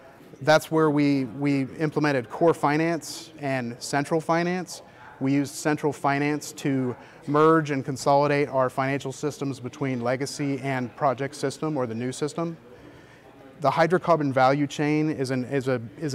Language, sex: English, male